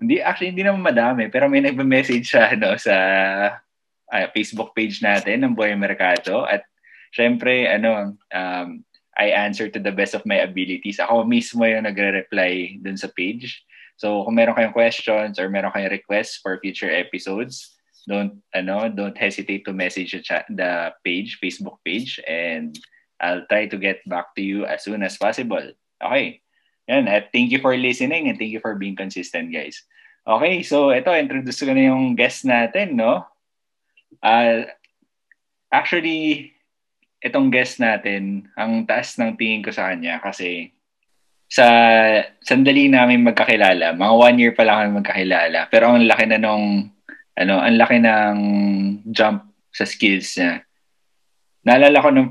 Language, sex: Filipino, male